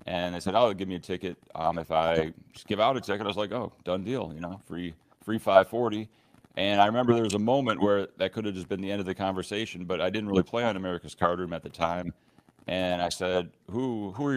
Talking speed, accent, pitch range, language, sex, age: 265 wpm, American, 90-100 Hz, English, male, 40-59